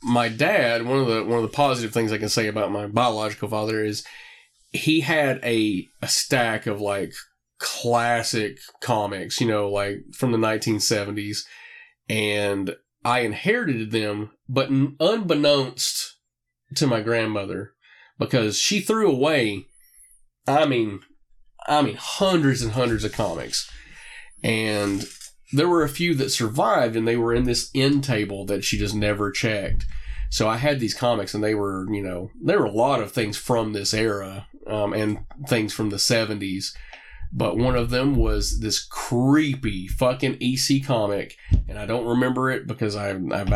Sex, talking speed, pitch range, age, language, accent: male, 160 wpm, 105-130 Hz, 30-49, English, American